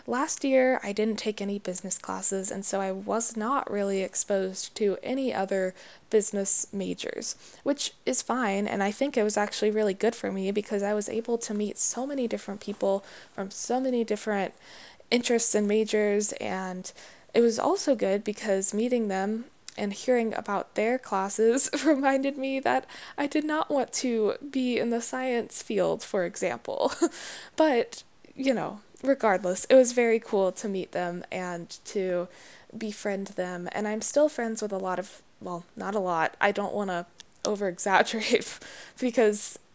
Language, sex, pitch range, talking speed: English, female, 190-235 Hz, 170 wpm